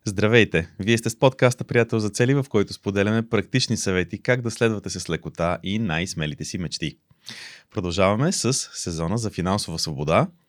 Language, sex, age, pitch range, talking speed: Bulgarian, male, 30-49, 90-115 Hz, 160 wpm